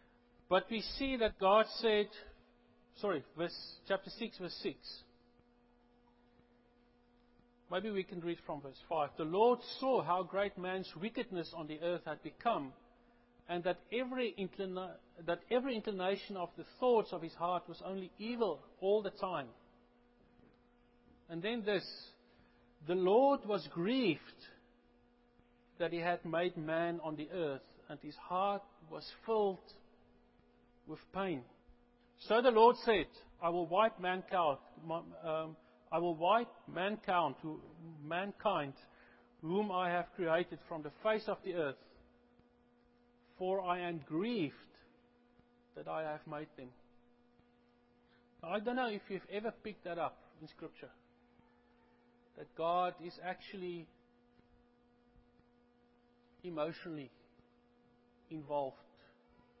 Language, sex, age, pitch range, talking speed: English, male, 50-69, 150-215 Hz, 115 wpm